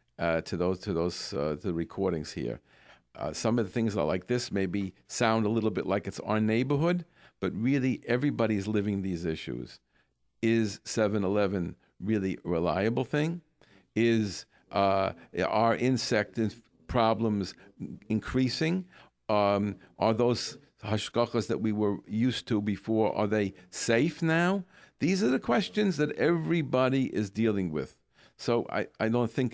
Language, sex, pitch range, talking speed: English, male, 95-120 Hz, 150 wpm